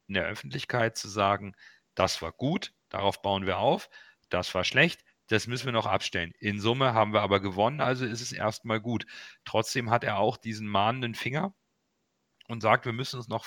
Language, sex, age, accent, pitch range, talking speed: German, male, 40-59, German, 100-125 Hz, 195 wpm